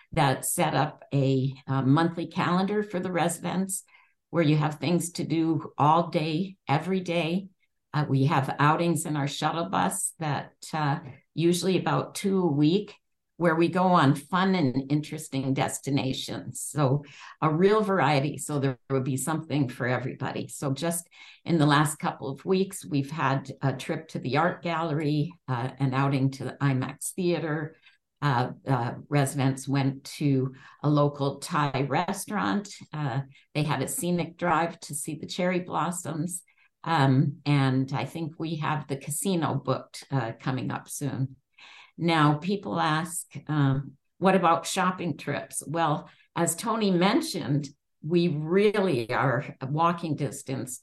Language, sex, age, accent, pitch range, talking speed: English, female, 60-79, American, 135-170 Hz, 150 wpm